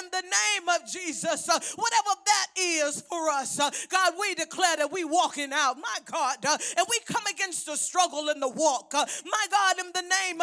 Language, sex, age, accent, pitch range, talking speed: English, female, 40-59, American, 315-415 Hz, 215 wpm